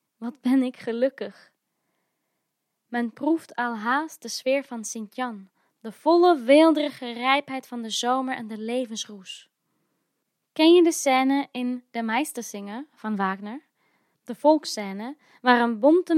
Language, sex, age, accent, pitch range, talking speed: Dutch, female, 20-39, Dutch, 220-275 Hz, 130 wpm